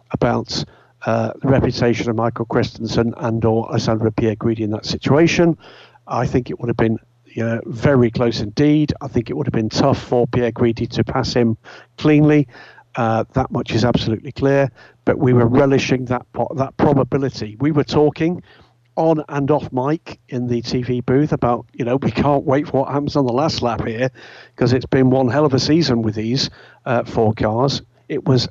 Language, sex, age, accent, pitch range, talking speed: English, male, 50-69, British, 115-140 Hz, 190 wpm